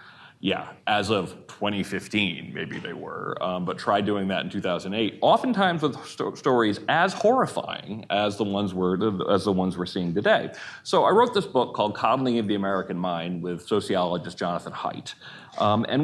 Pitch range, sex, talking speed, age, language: 95-150 Hz, male, 175 wpm, 30-49, English